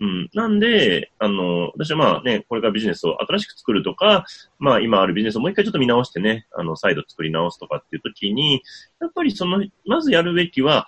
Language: Japanese